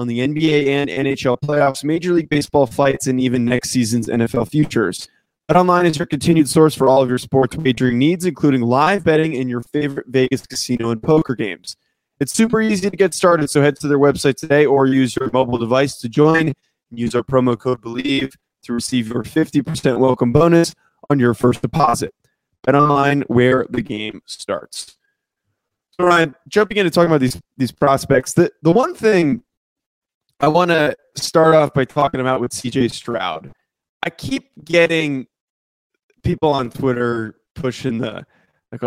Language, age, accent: English, 20-39, American